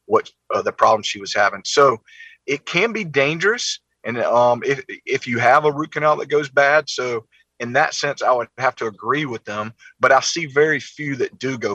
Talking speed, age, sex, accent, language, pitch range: 220 wpm, 40-59, male, American, English, 110-150 Hz